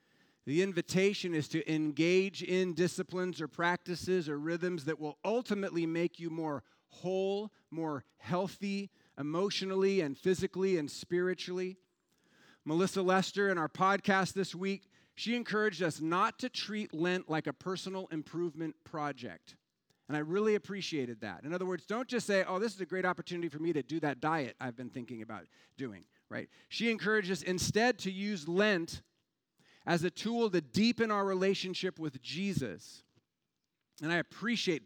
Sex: male